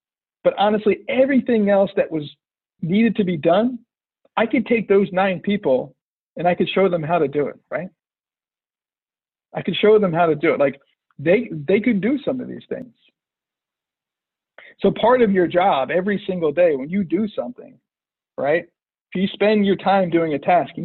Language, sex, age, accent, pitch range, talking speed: English, male, 50-69, American, 170-225 Hz, 185 wpm